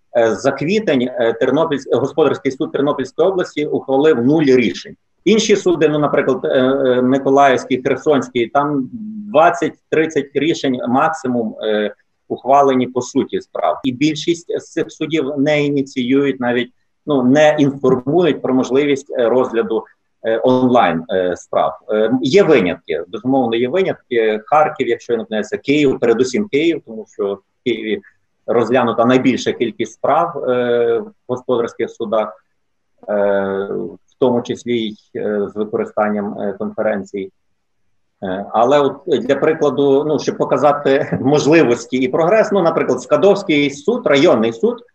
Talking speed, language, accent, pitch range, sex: 120 wpm, Ukrainian, native, 115-150 Hz, male